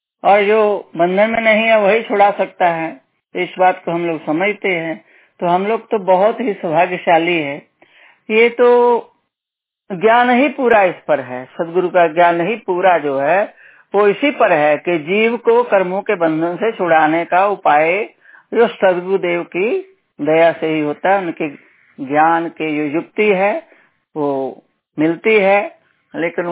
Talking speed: 165 wpm